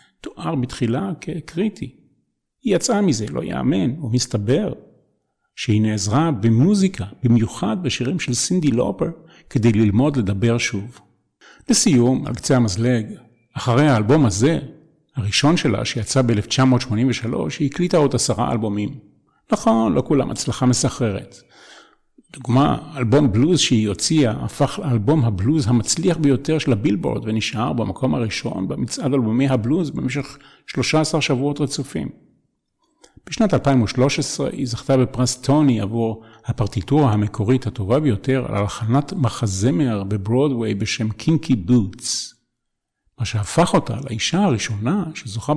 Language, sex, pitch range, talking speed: Hebrew, male, 115-145 Hz, 115 wpm